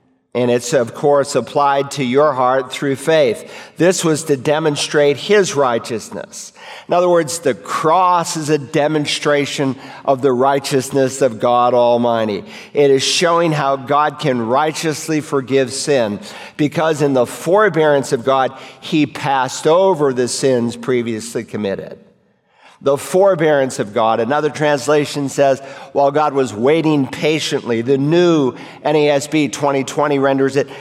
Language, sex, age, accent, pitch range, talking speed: English, male, 50-69, American, 130-155 Hz, 135 wpm